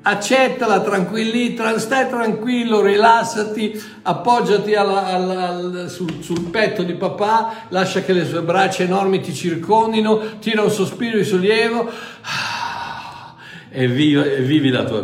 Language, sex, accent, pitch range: Italian, male, native, 145-245 Hz